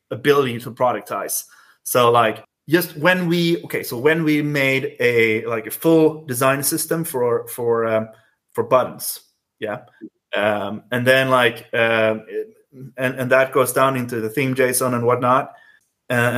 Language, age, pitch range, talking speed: English, 30-49, 115-145 Hz, 155 wpm